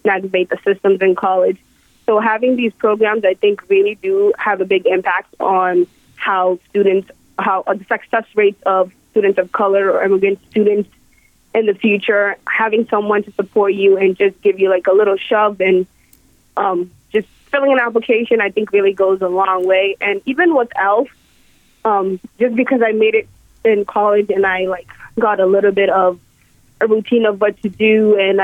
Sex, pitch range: female, 195-220 Hz